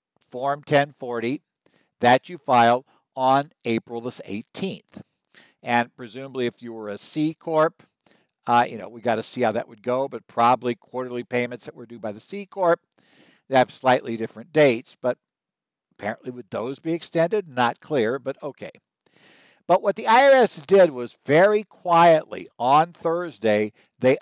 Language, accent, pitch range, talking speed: English, American, 120-150 Hz, 160 wpm